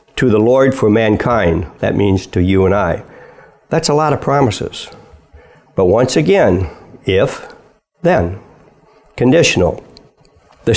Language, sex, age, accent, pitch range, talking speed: English, male, 60-79, American, 110-170 Hz, 130 wpm